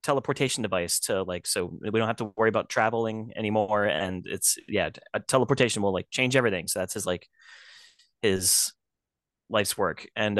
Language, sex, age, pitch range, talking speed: English, male, 20-39, 100-120 Hz, 165 wpm